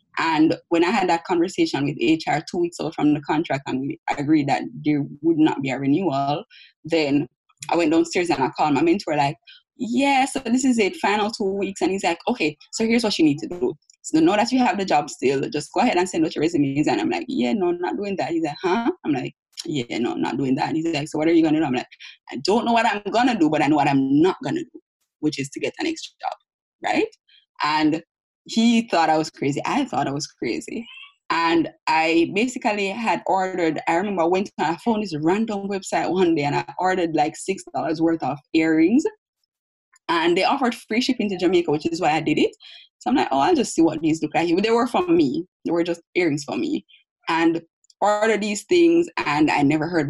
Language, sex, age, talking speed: English, female, 20-39, 245 wpm